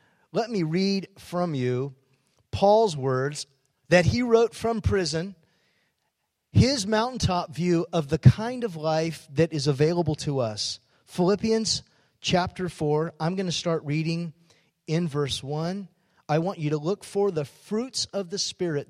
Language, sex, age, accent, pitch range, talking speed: English, male, 40-59, American, 135-185 Hz, 145 wpm